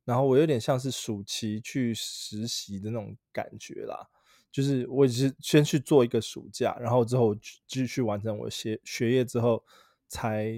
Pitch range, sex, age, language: 110-130 Hz, male, 20-39, Chinese